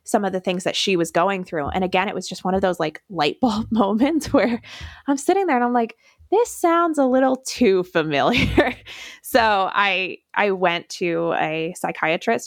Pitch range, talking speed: 170-230 Hz, 195 wpm